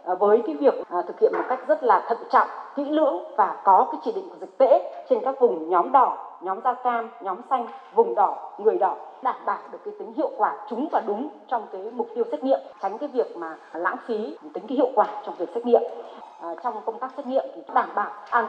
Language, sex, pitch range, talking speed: Vietnamese, female, 140-235 Hz, 245 wpm